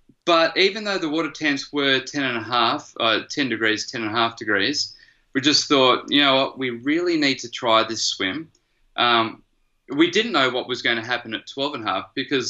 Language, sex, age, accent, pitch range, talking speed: English, male, 20-39, Australian, 110-145 Hz, 225 wpm